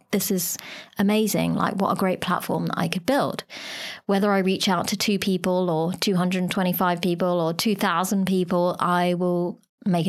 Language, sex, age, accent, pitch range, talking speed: English, female, 30-49, British, 170-195 Hz, 165 wpm